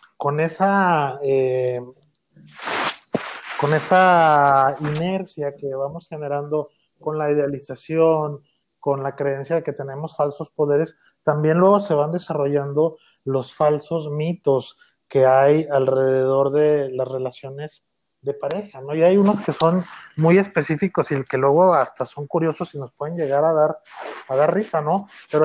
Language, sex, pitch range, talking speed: Spanish, male, 145-175 Hz, 145 wpm